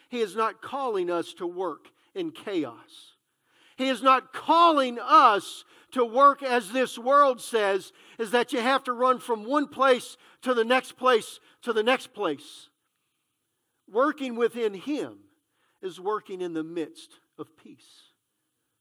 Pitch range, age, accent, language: 180-285 Hz, 50-69, American, English